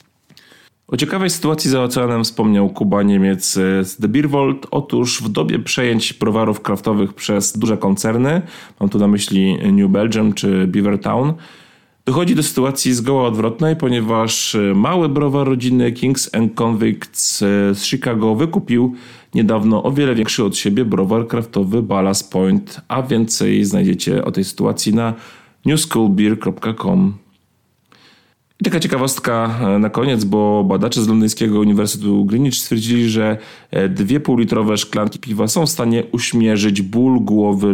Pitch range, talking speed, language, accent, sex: 105-130 Hz, 135 wpm, Polish, native, male